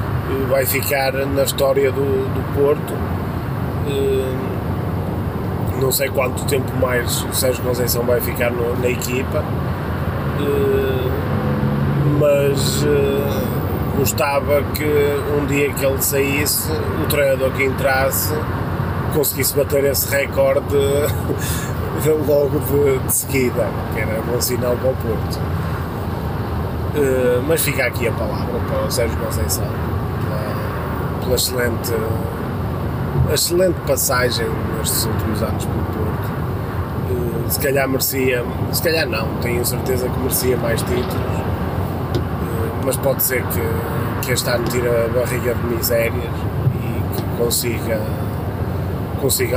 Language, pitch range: Portuguese, 100-135 Hz